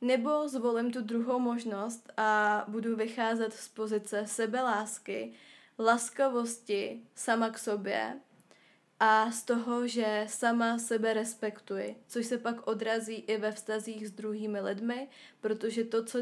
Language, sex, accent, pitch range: Czech, female, native, 220-245 Hz